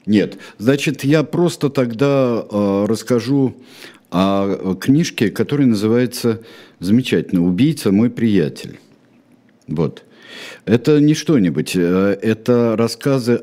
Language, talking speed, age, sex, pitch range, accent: Russian, 95 wpm, 60-79, male, 100-140 Hz, native